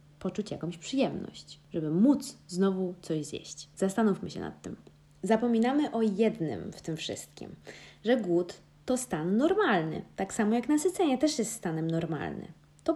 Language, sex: Polish, female